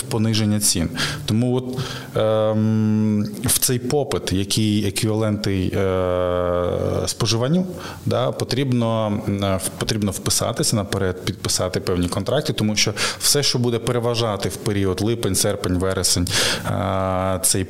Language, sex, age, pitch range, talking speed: Ukrainian, male, 20-39, 100-125 Hz, 120 wpm